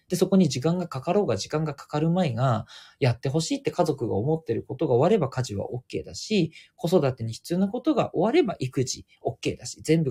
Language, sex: Japanese, male